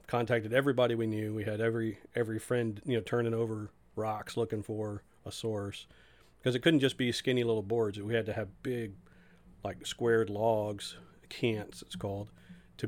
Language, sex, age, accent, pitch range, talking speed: English, male, 40-59, American, 105-120 Hz, 175 wpm